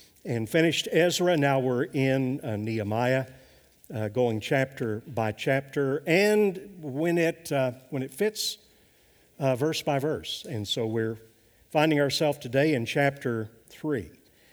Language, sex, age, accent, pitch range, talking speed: English, male, 50-69, American, 120-155 Hz, 135 wpm